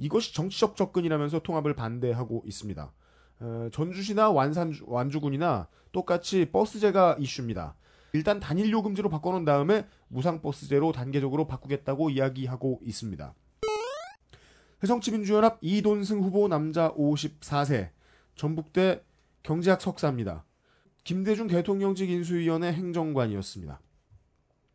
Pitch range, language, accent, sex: 135-190 Hz, Korean, native, male